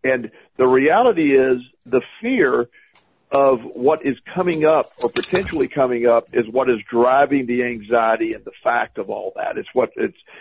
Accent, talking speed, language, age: American, 175 wpm, English, 50-69